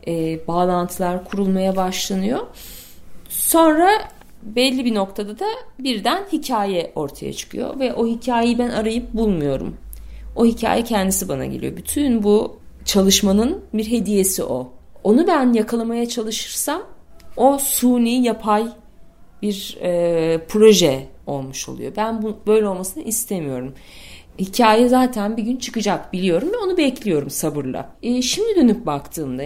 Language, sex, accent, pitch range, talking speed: Turkish, female, native, 155-230 Hz, 125 wpm